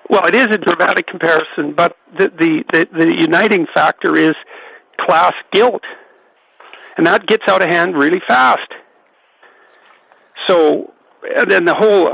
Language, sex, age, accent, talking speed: English, male, 60-79, American, 145 wpm